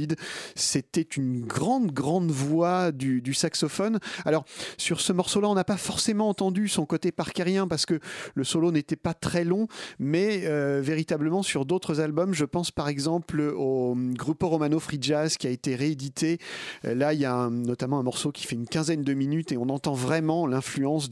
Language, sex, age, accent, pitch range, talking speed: French, male, 40-59, French, 135-180 Hz, 195 wpm